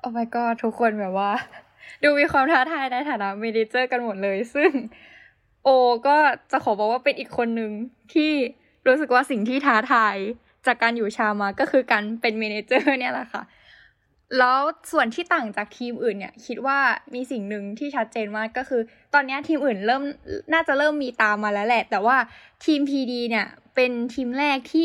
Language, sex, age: English, female, 10-29